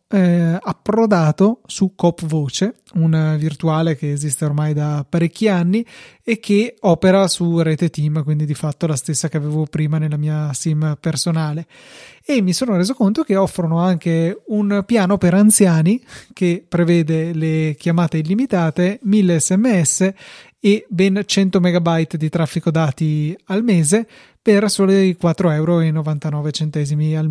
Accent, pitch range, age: native, 155-195 Hz, 30-49